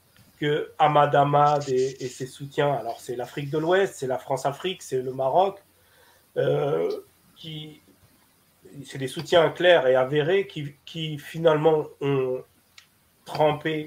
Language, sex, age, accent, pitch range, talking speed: French, male, 40-59, French, 130-170 Hz, 135 wpm